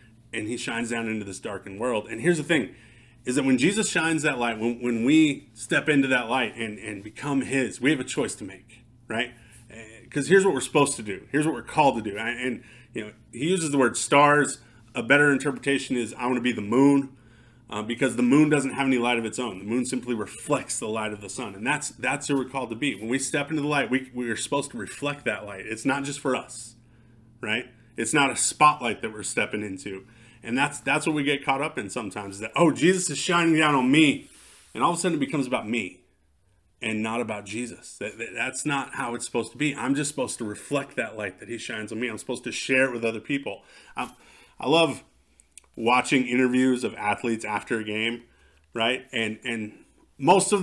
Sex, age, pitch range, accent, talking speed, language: male, 30-49, 115-140 Hz, American, 240 wpm, English